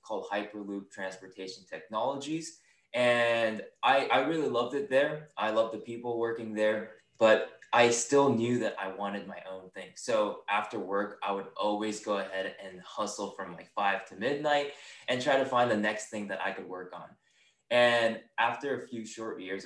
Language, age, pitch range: English, 20-39, 100-120 Hz